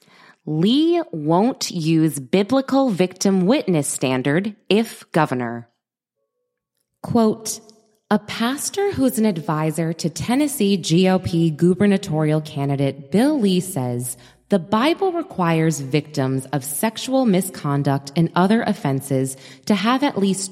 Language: English